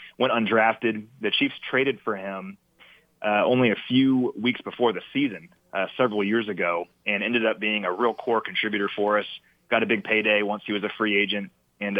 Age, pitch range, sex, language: 30-49, 100-120 Hz, male, English